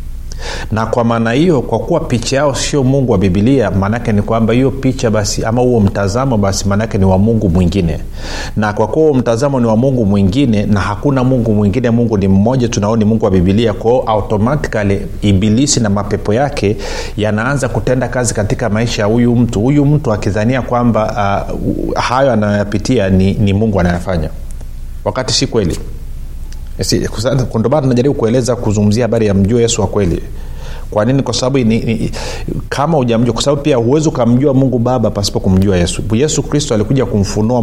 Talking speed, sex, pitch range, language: 175 wpm, male, 100-120 Hz, Swahili